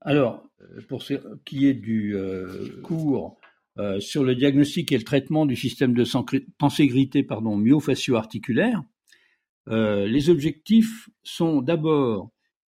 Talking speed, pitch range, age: 120 wpm, 130-180 Hz, 50-69